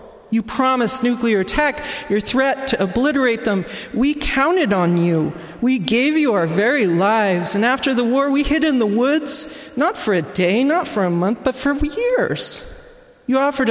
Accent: American